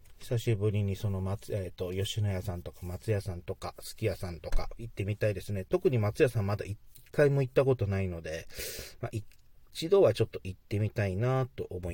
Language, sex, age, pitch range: Japanese, male, 40-59, 100-125 Hz